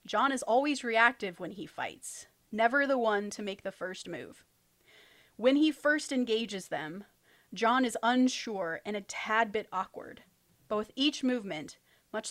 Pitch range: 200-250 Hz